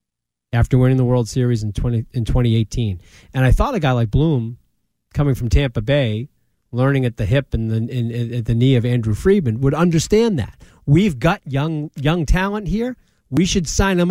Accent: American